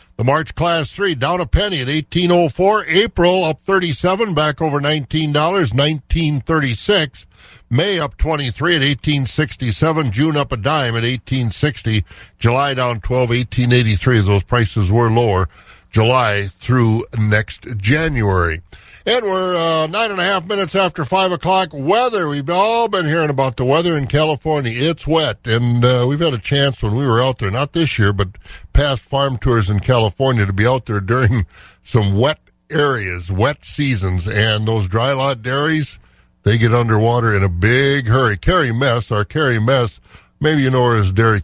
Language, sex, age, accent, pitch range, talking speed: English, male, 50-69, American, 110-155 Hz, 165 wpm